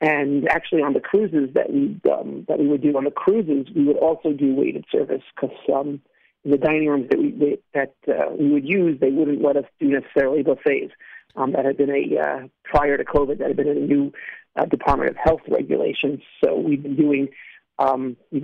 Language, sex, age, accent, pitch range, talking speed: English, male, 50-69, American, 140-165 Hz, 210 wpm